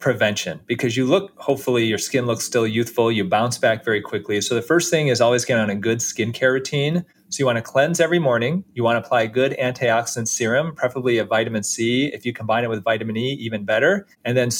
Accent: American